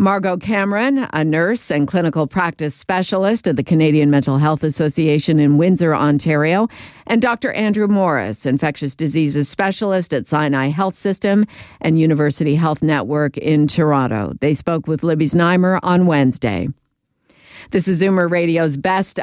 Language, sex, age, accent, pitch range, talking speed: English, female, 50-69, American, 150-195 Hz, 145 wpm